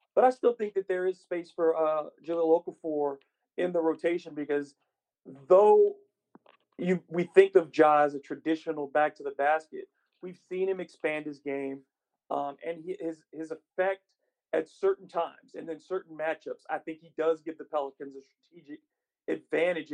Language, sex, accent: English, male, American